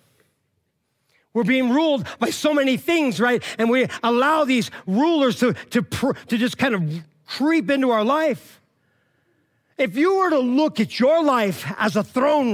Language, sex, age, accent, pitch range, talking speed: English, male, 50-69, American, 150-245 Hz, 165 wpm